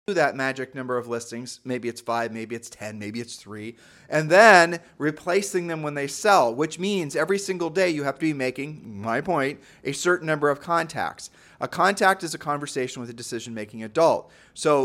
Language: English